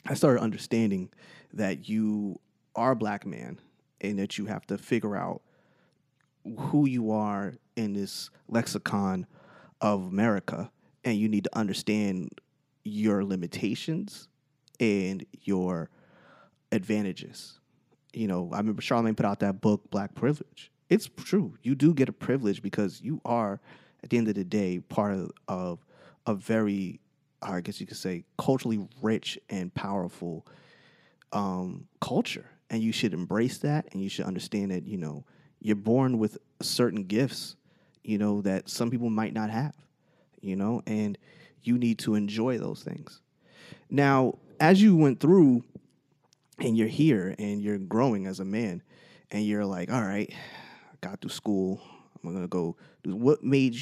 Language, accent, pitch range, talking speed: English, American, 100-130 Hz, 155 wpm